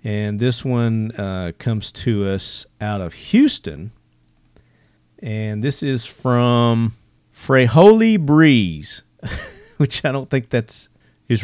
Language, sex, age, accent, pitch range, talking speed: English, male, 40-59, American, 100-130 Hz, 115 wpm